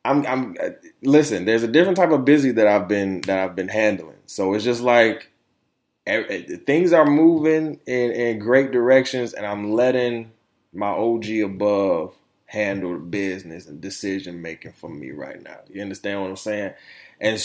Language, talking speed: English, 165 wpm